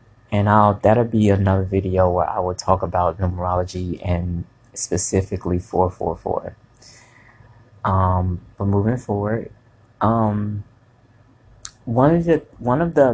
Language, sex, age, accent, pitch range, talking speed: English, male, 30-49, American, 100-125 Hz, 105 wpm